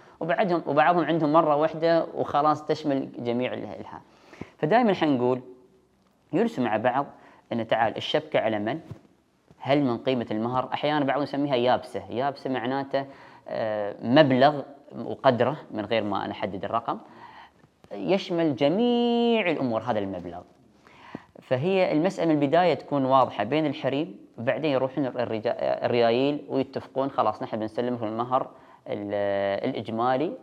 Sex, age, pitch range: female, 20-39, 115-160 Hz